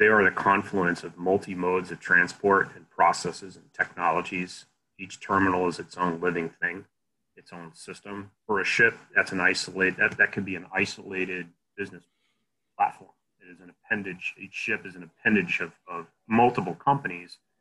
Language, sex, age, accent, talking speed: English, male, 30-49, American, 170 wpm